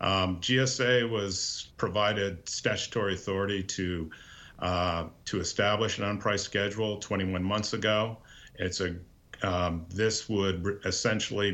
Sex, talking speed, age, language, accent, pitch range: male, 115 wpm, 50-69, English, American, 95-115 Hz